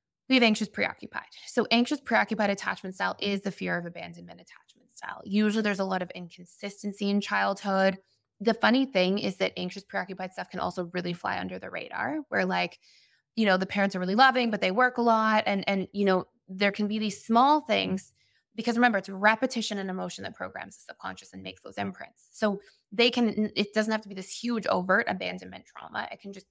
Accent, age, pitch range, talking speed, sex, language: American, 20-39, 185-215 Hz, 210 wpm, female, English